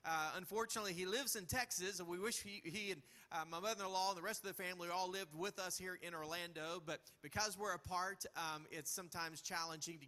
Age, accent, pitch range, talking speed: 40-59, American, 165-190 Hz, 230 wpm